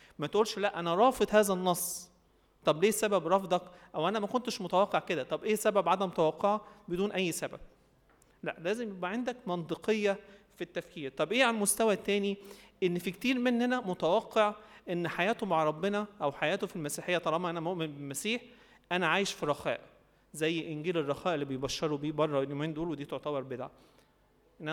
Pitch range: 155-200 Hz